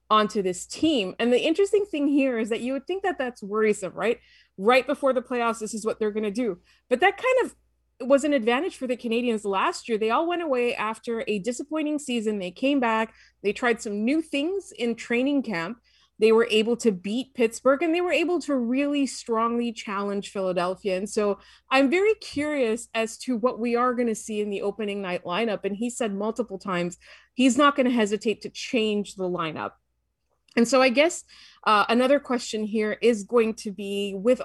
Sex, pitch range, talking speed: female, 205-265 Hz, 205 wpm